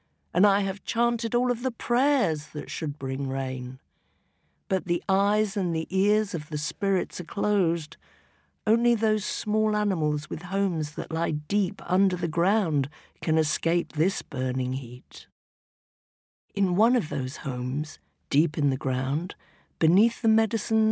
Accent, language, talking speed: British, English, 150 wpm